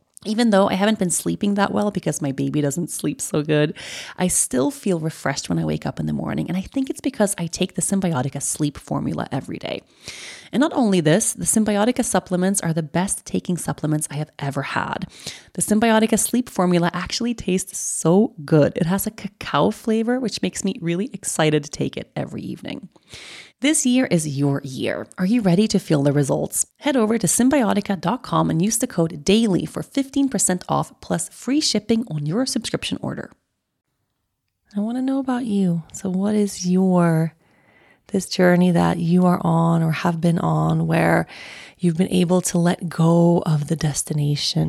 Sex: female